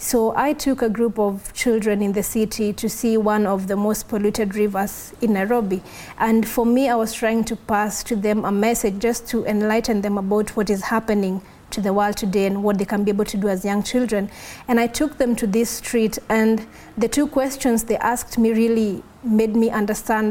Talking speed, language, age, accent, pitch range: 215 wpm, English, 30-49, South African, 210-235 Hz